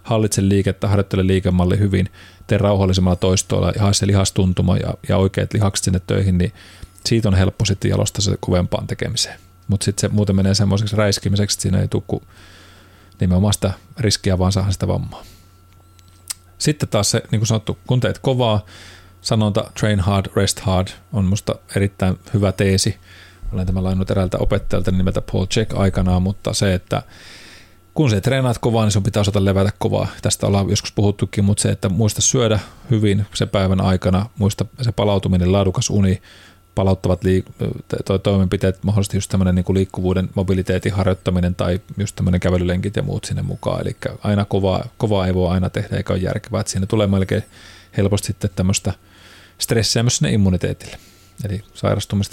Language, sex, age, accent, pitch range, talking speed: Finnish, male, 30-49, native, 95-110 Hz, 160 wpm